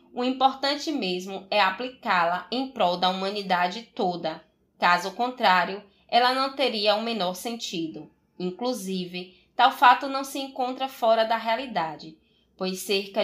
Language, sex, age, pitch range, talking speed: Portuguese, female, 20-39, 195-250 Hz, 130 wpm